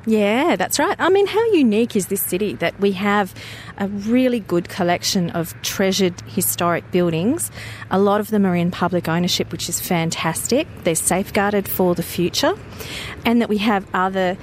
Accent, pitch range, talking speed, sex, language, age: Australian, 180-220 Hz, 175 wpm, female, English, 40-59